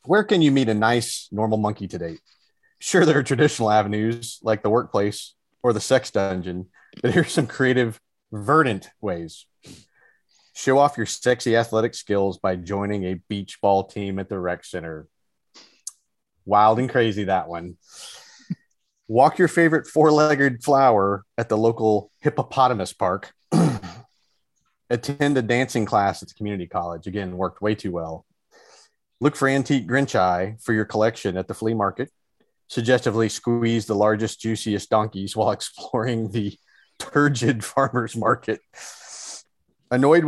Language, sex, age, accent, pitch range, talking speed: English, male, 30-49, American, 105-135 Hz, 145 wpm